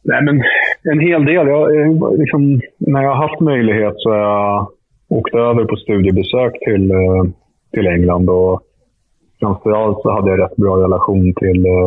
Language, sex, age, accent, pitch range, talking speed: Swedish, male, 30-49, Norwegian, 95-115 Hz, 150 wpm